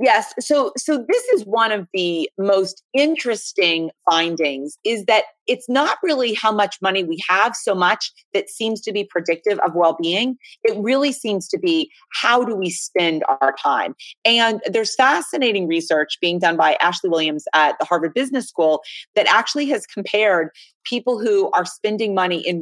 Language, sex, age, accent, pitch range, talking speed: English, female, 30-49, American, 175-245 Hz, 170 wpm